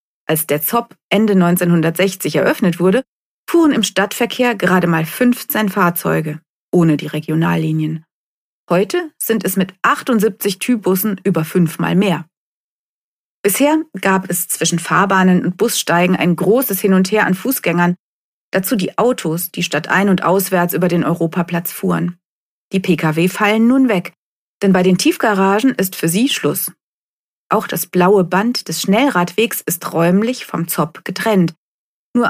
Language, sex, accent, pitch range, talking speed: German, female, German, 170-210 Hz, 145 wpm